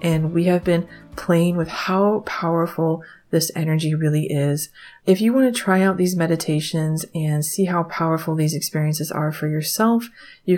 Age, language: 30-49, English